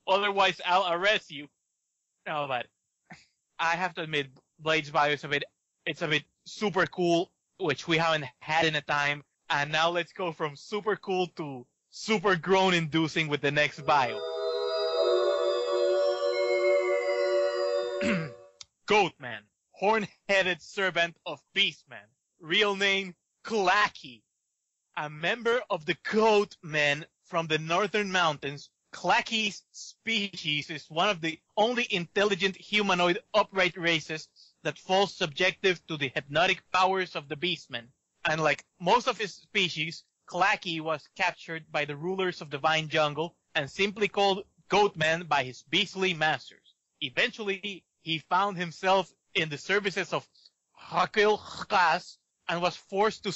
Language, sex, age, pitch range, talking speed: English, male, 20-39, 150-195 Hz, 130 wpm